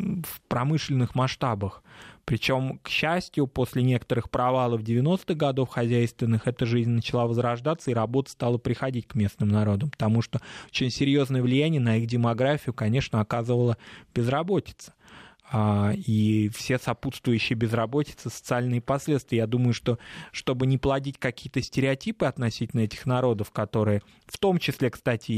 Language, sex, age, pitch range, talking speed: Russian, male, 20-39, 115-135 Hz, 130 wpm